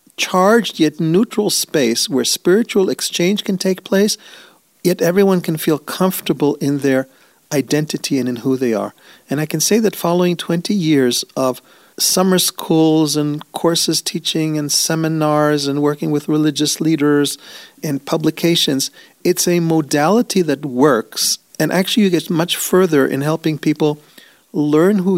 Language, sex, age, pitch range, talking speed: English, male, 40-59, 135-180 Hz, 150 wpm